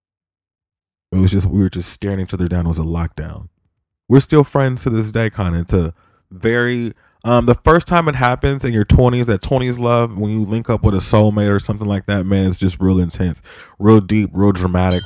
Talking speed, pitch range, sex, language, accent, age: 220 wpm, 90-105 Hz, male, English, American, 20-39